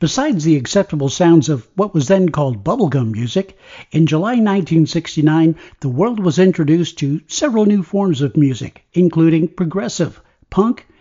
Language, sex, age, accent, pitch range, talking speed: English, male, 60-79, American, 150-195 Hz, 145 wpm